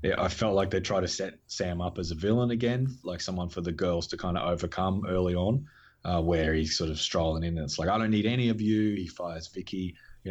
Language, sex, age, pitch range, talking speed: English, male, 30-49, 85-105 Hz, 255 wpm